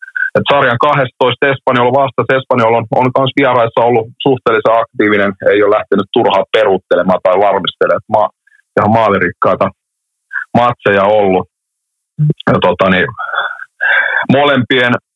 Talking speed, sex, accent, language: 110 wpm, male, native, Finnish